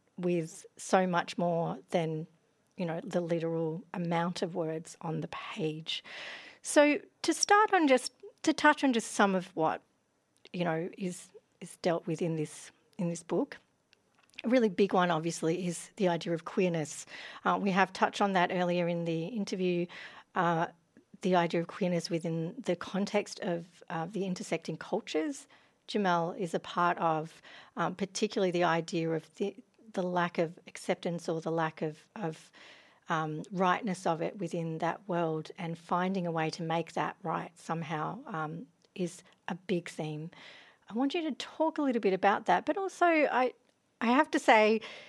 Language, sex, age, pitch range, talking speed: English, female, 40-59, 165-205 Hz, 170 wpm